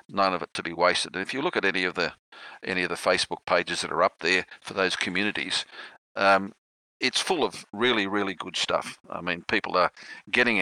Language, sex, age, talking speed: English, male, 50-69, 220 wpm